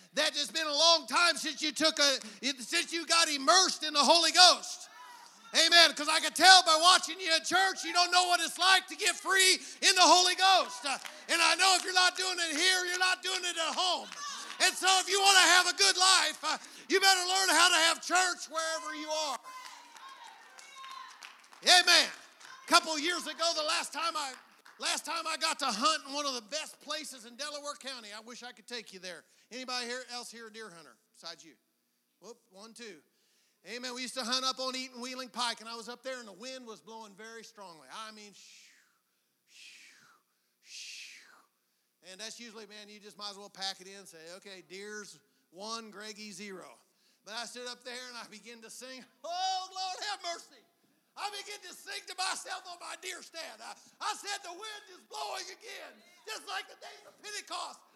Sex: male